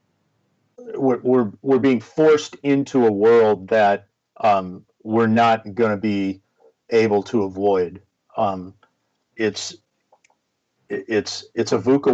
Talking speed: 120 wpm